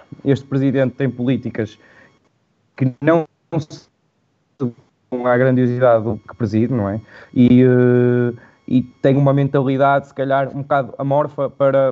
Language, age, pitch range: Portuguese, 20-39, 125-155 Hz